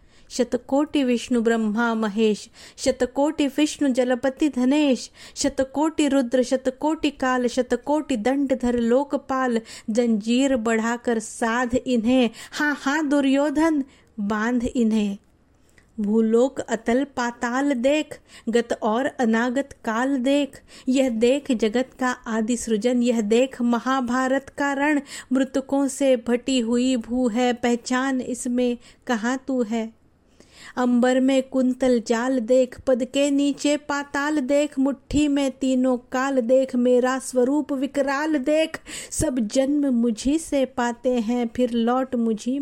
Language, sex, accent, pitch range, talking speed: Hindi, female, native, 240-275 Hz, 115 wpm